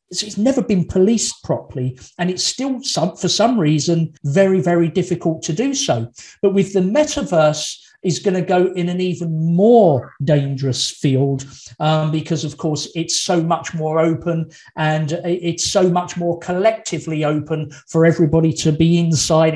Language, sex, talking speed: English, male, 165 wpm